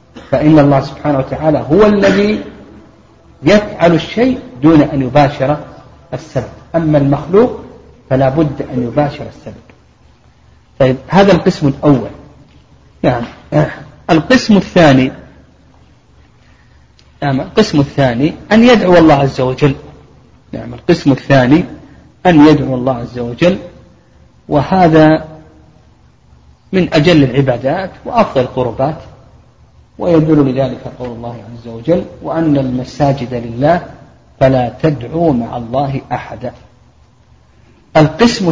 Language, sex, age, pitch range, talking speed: Arabic, male, 40-59, 120-155 Hz, 100 wpm